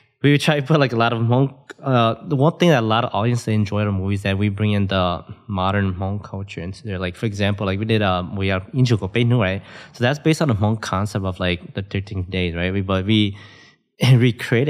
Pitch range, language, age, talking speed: 95-120 Hz, English, 20-39, 245 wpm